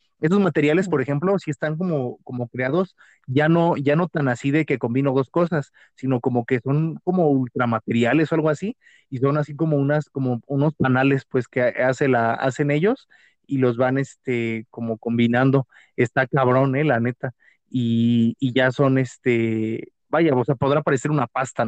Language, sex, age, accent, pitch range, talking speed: Spanish, male, 30-49, Mexican, 125-150 Hz, 185 wpm